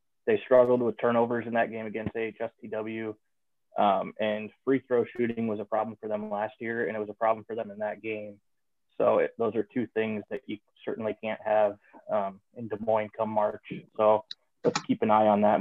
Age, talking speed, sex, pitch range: 20-39, 210 wpm, male, 105-115 Hz